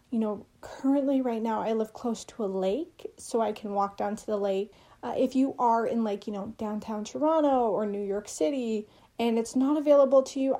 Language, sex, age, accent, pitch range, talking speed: English, female, 30-49, American, 205-250 Hz, 220 wpm